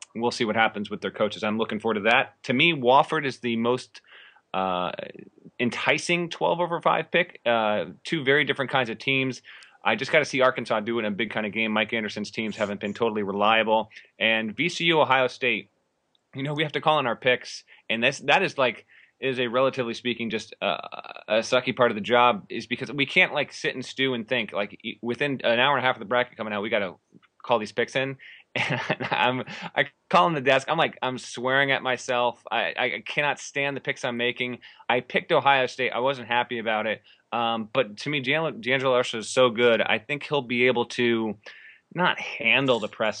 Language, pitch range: English, 115-140 Hz